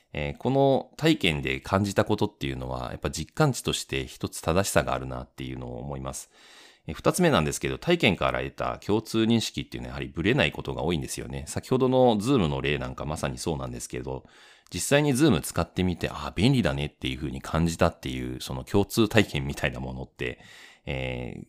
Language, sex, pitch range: Japanese, male, 65-110 Hz